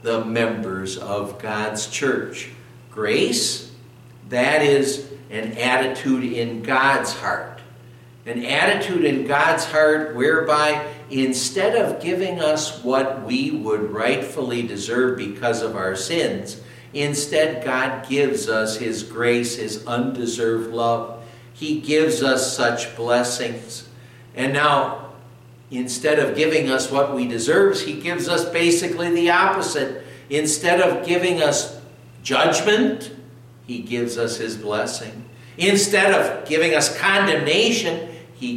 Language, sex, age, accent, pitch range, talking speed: English, male, 60-79, American, 120-155 Hz, 120 wpm